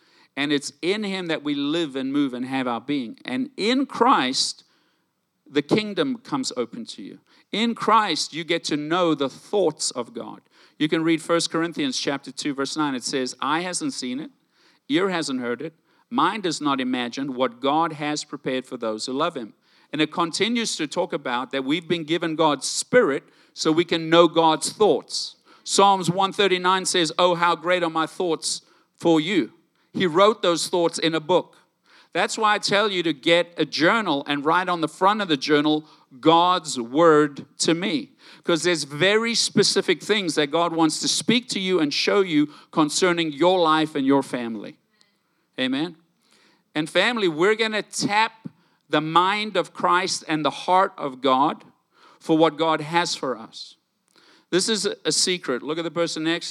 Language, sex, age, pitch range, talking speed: English, male, 50-69, 150-205 Hz, 185 wpm